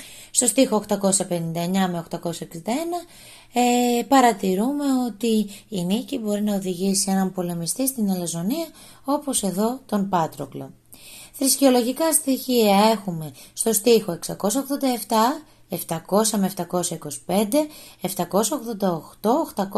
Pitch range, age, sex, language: 190-265 Hz, 20-39, female, Greek